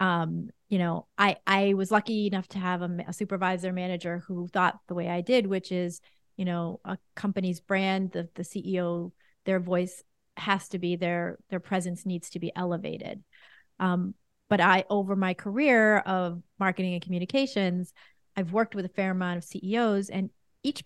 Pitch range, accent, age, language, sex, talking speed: 180-210 Hz, American, 30-49, English, female, 180 wpm